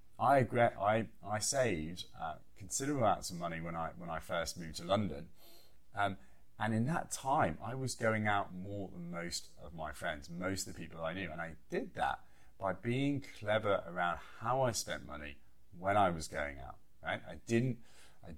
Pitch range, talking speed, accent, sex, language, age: 85-120 Hz, 190 wpm, British, male, English, 30-49